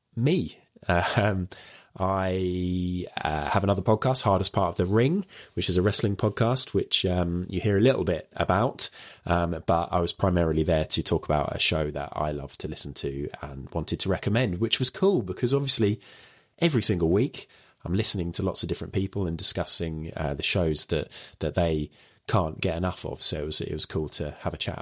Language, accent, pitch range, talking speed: English, British, 85-110 Hz, 205 wpm